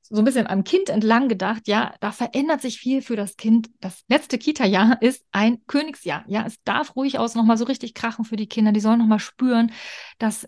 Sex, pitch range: female, 200-240 Hz